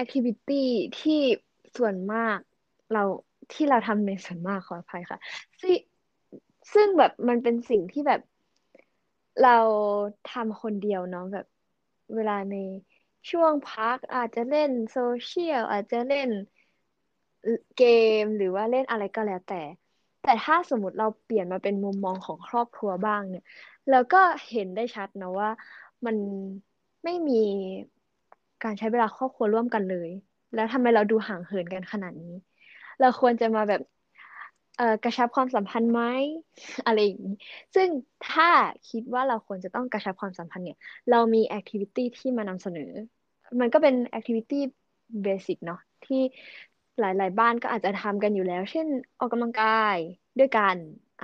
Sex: female